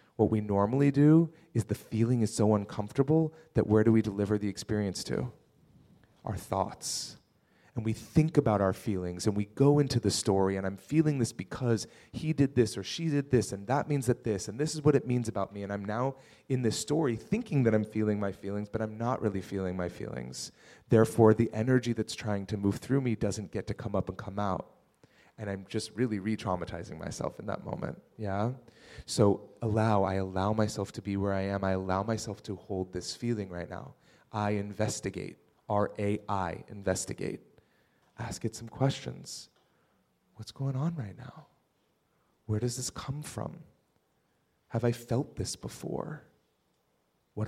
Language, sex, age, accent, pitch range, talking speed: English, male, 30-49, American, 100-125 Hz, 185 wpm